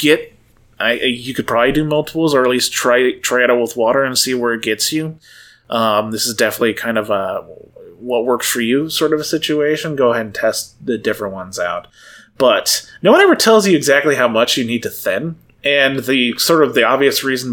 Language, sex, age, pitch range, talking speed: English, male, 30-49, 120-155 Hz, 225 wpm